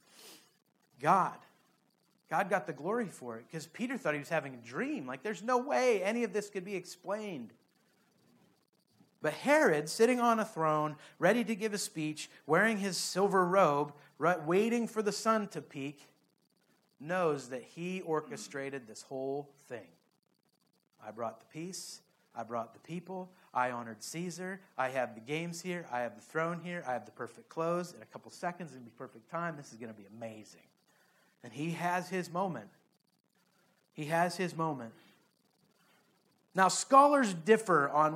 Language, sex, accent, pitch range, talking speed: English, male, American, 145-195 Hz, 170 wpm